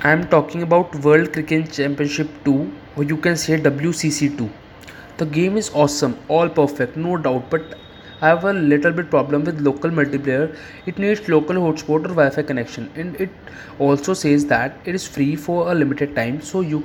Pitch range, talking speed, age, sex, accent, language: 140-160 Hz, 190 wpm, 20-39, male, Indian, English